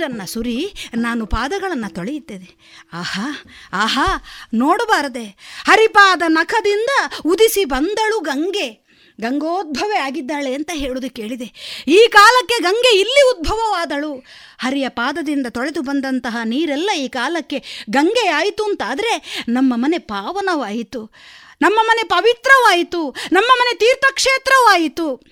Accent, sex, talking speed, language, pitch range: native, female, 90 wpm, Kannada, 265-385 Hz